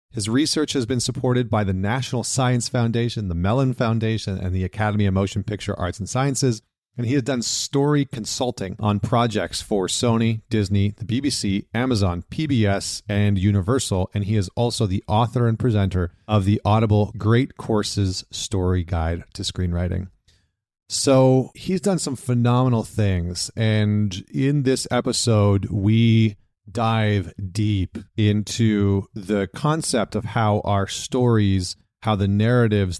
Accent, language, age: American, English, 30-49